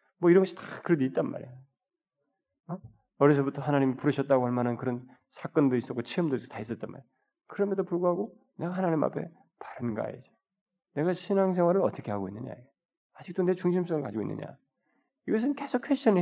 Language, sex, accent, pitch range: Korean, male, native, 120-190 Hz